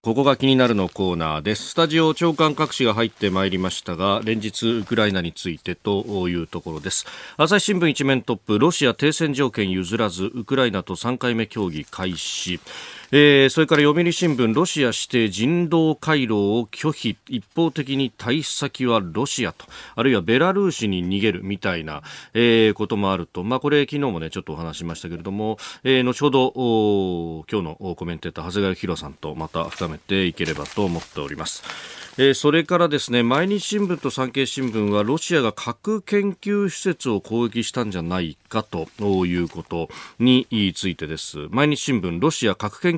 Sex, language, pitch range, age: male, Japanese, 95-135 Hz, 40-59